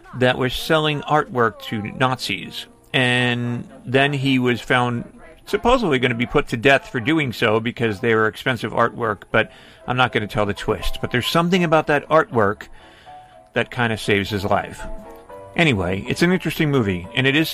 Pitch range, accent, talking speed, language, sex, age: 115-155 Hz, American, 185 wpm, English, male, 40-59